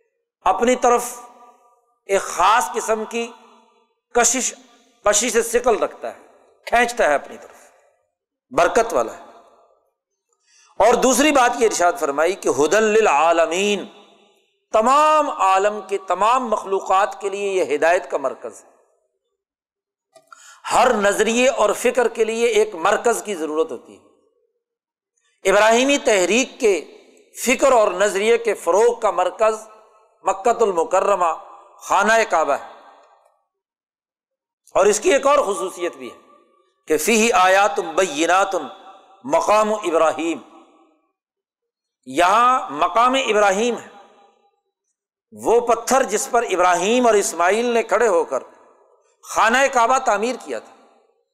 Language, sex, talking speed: Urdu, male, 115 wpm